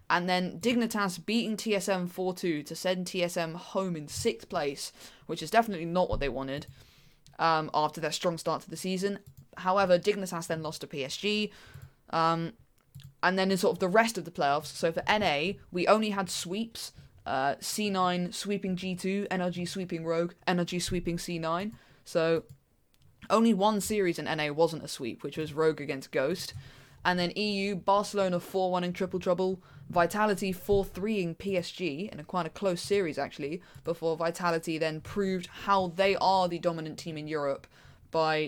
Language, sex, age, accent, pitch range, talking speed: English, female, 20-39, British, 160-195 Hz, 170 wpm